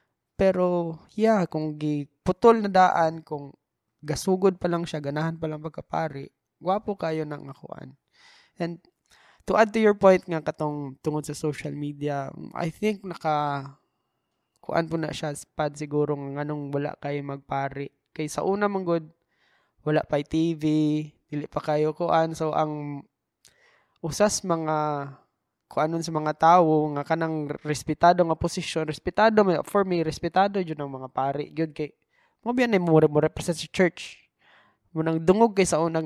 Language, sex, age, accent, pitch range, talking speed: Filipino, male, 20-39, native, 150-185 Hz, 160 wpm